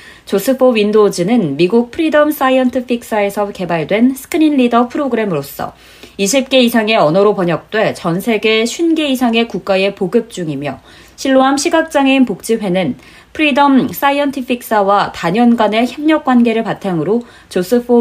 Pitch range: 195-265 Hz